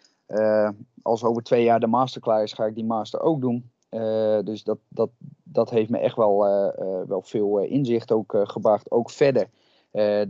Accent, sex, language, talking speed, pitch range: Dutch, male, Dutch, 205 wpm, 110-120 Hz